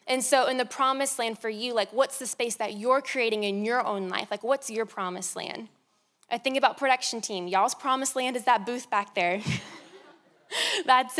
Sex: female